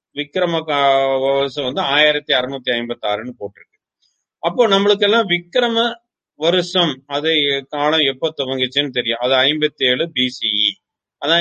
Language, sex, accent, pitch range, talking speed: English, male, Indian, 135-180 Hz, 125 wpm